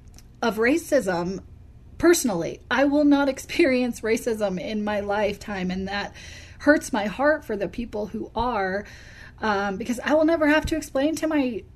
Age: 30-49